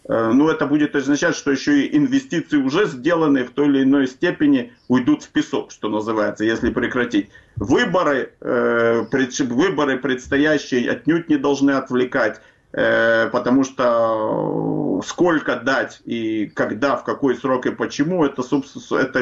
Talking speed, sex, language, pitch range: 145 wpm, male, Ukrainian, 125-155 Hz